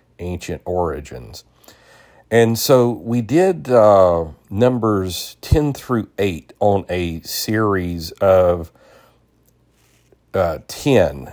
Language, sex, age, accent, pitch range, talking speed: English, male, 40-59, American, 85-105 Hz, 90 wpm